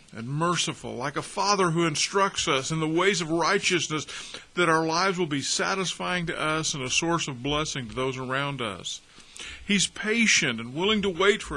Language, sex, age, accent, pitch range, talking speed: English, male, 50-69, American, 140-190 Hz, 190 wpm